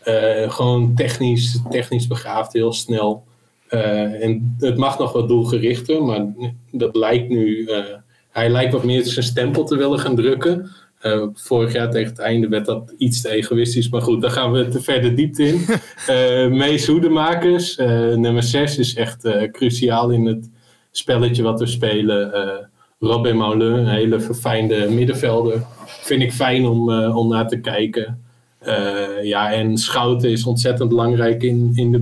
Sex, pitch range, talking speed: male, 110-125 Hz, 170 wpm